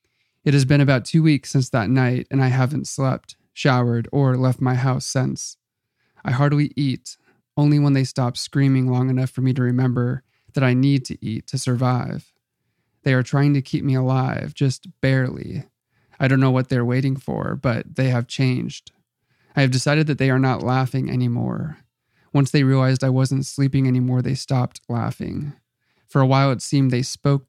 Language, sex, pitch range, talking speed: English, male, 125-140 Hz, 190 wpm